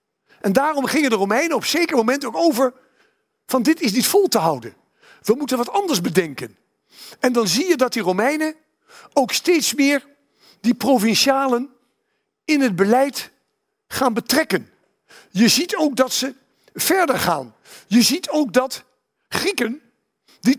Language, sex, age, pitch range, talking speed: Dutch, male, 50-69, 225-295 Hz, 155 wpm